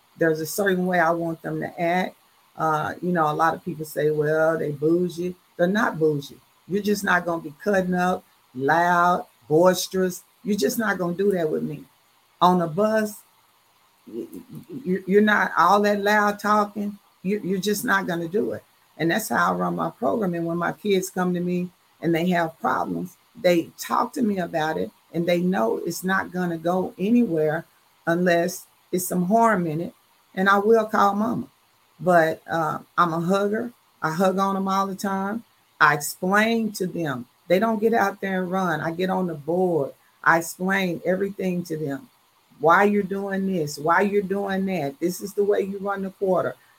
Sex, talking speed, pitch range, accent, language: female, 195 wpm, 165-200 Hz, American, English